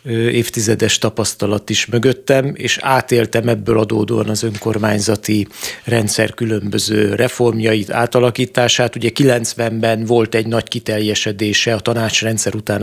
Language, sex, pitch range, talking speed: Hungarian, male, 105-125 Hz, 110 wpm